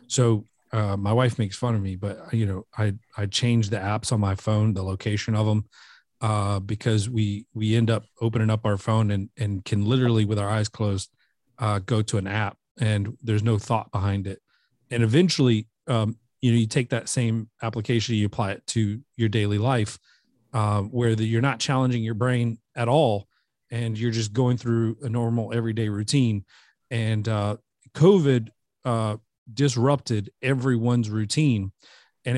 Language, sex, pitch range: English, male, 110-125 Hz